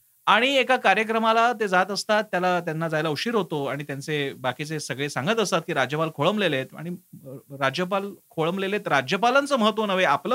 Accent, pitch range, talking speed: native, 150-215 Hz, 100 wpm